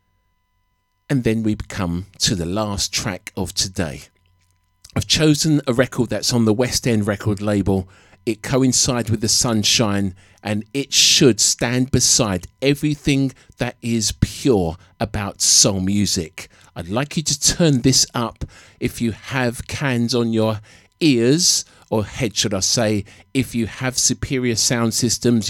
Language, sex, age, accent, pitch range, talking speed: English, male, 50-69, British, 100-125 Hz, 150 wpm